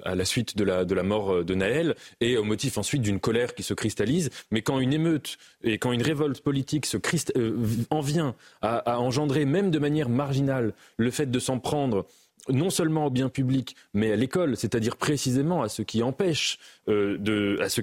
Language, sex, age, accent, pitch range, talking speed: French, male, 20-39, French, 115-150 Hz, 210 wpm